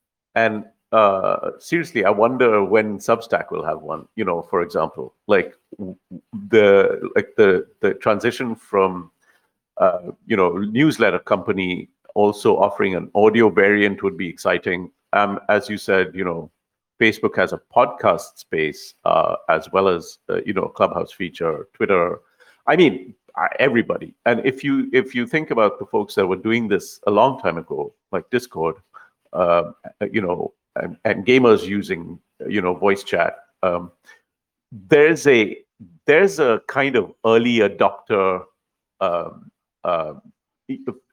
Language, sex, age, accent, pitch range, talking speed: English, male, 50-69, Indian, 95-135 Hz, 145 wpm